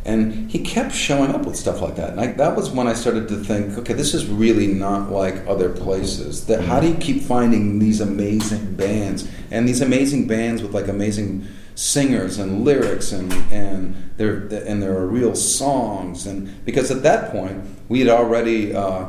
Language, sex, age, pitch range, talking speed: English, male, 40-59, 95-110 Hz, 190 wpm